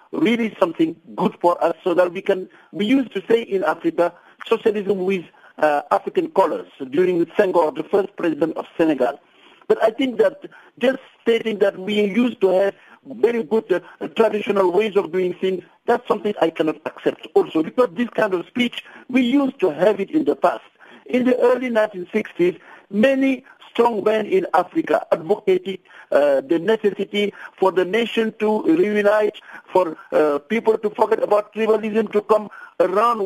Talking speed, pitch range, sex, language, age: 170 wpm, 190-250 Hz, male, English, 60-79